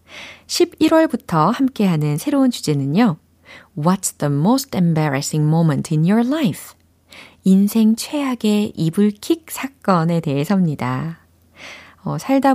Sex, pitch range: female, 150-210 Hz